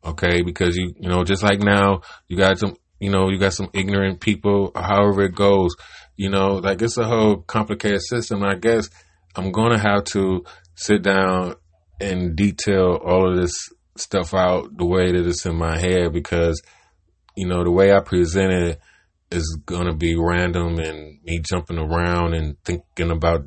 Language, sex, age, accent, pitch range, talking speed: English, male, 20-39, American, 80-95 Hz, 185 wpm